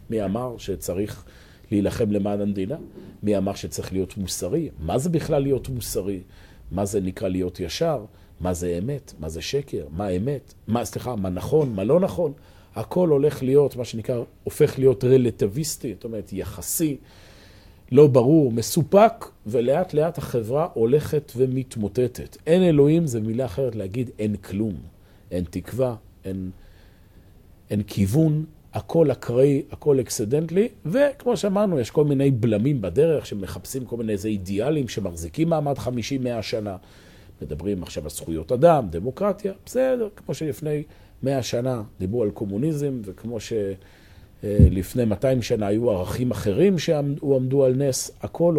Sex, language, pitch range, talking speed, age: male, Hebrew, 95-140 Hz, 140 wpm, 40-59